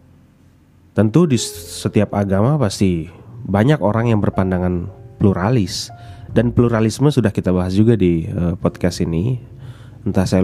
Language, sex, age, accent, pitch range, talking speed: Indonesian, male, 20-39, native, 90-110 Hz, 120 wpm